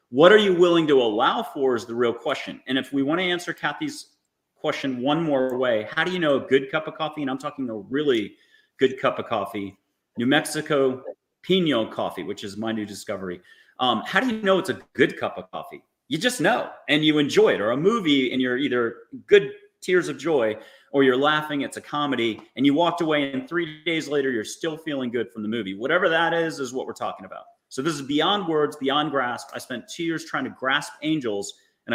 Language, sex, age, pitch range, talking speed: English, male, 30-49, 130-200 Hz, 230 wpm